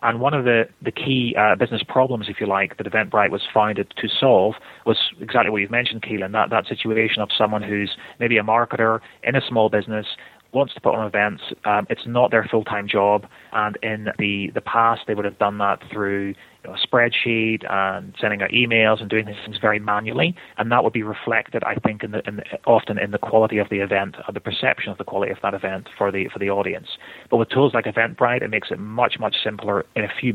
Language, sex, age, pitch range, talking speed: English, male, 30-49, 100-115 Hz, 235 wpm